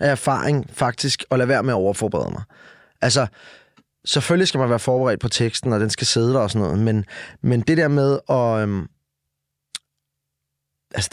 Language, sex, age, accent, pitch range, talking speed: Danish, male, 20-39, native, 105-135 Hz, 185 wpm